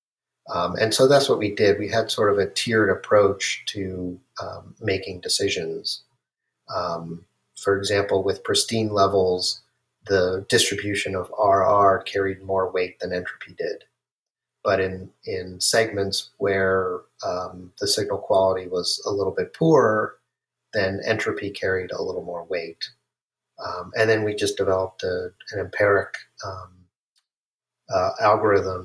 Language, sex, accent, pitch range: English, male, American, 95-130 Hz